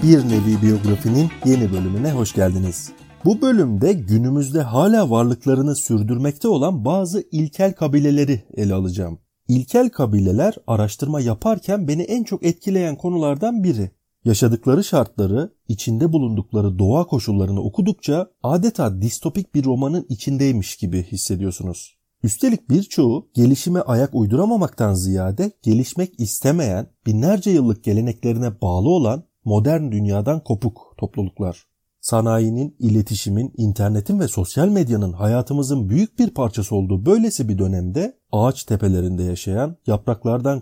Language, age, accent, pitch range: Turkish, 40-59, native, 105-155 Hz